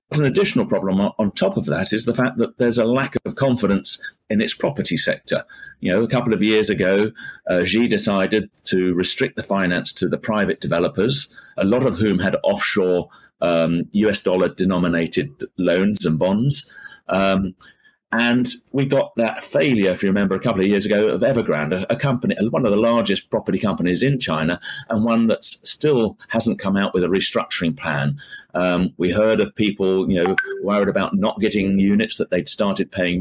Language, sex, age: English, male, 30-49